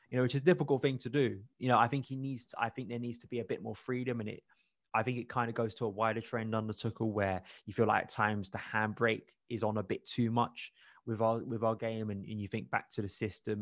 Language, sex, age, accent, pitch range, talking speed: English, male, 20-39, British, 105-120 Hz, 295 wpm